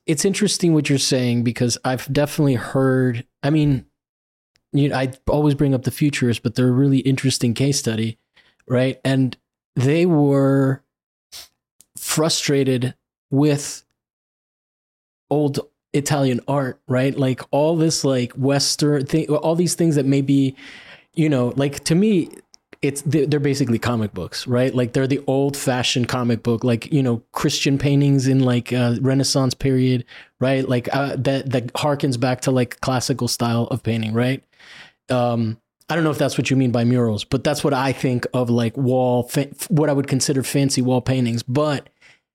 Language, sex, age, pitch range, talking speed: English, male, 20-39, 125-145 Hz, 165 wpm